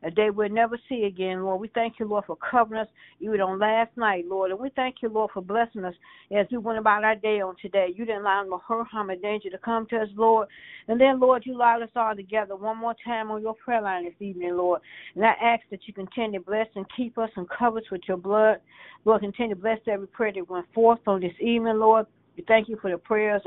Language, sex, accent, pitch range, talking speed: English, female, American, 195-230 Hz, 260 wpm